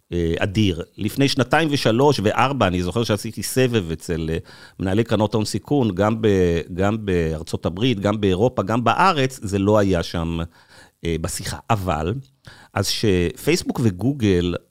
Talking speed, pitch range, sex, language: 135 wpm, 95-130 Hz, male, Hebrew